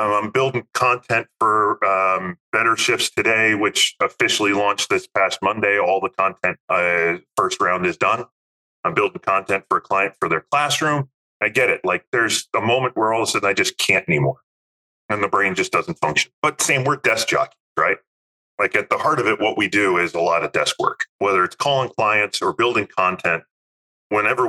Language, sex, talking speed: English, male, 200 wpm